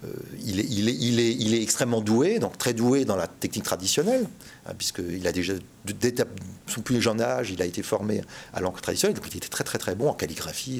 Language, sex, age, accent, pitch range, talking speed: French, male, 40-59, French, 100-135 Hz, 245 wpm